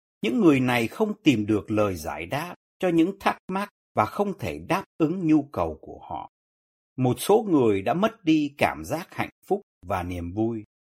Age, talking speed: 60-79, 190 wpm